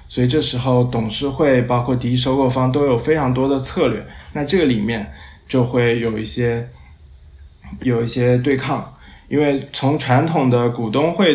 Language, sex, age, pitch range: Chinese, male, 20-39, 120-150 Hz